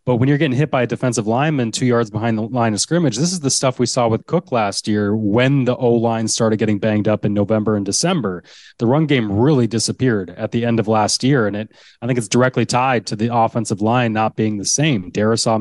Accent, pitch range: American, 110-140 Hz